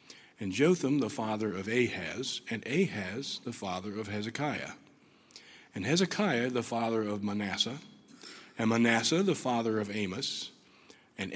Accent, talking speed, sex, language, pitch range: American, 130 wpm, male, English, 110-130 Hz